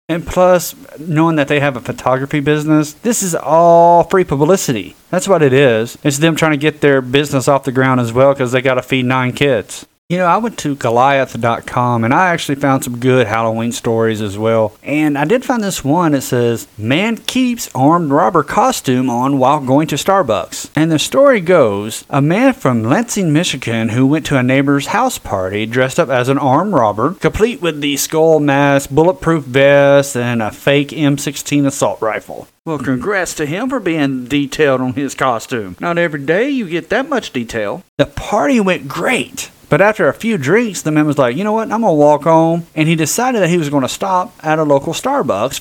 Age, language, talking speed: 30-49, English, 205 wpm